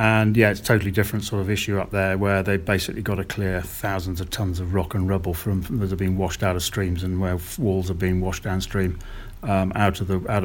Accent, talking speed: British, 265 wpm